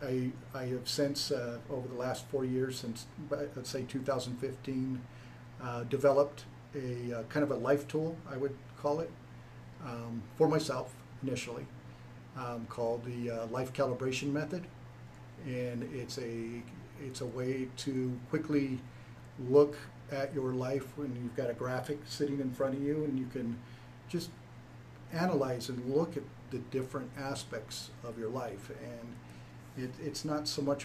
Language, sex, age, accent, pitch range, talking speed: English, male, 50-69, American, 120-140 Hz, 155 wpm